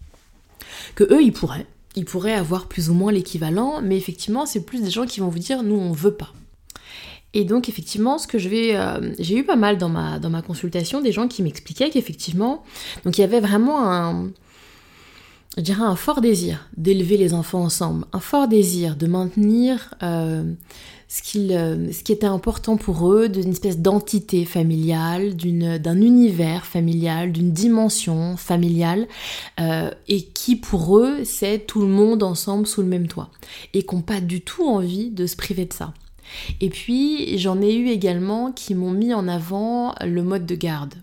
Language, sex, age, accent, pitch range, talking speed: French, female, 20-39, French, 170-210 Hz, 185 wpm